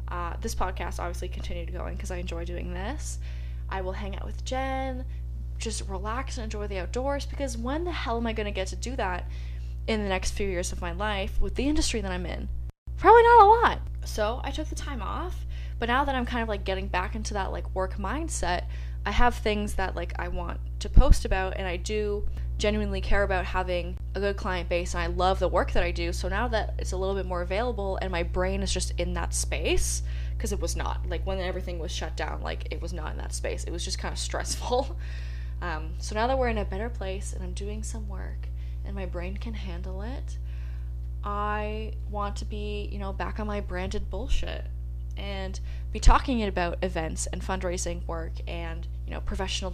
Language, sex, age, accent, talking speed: English, female, 20-39, American, 225 wpm